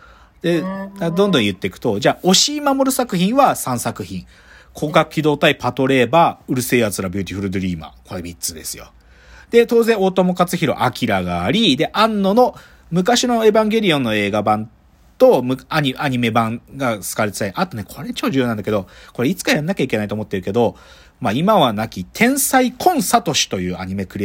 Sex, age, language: male, 40-59, Japanese